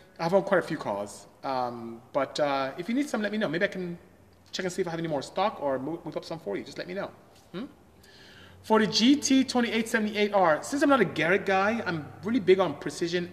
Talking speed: 240 wpm